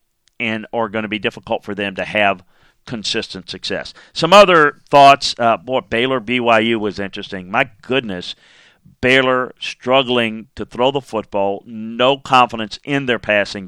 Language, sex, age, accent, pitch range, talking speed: English, male, 50-69, American, 105-130 Hz, 145 wpm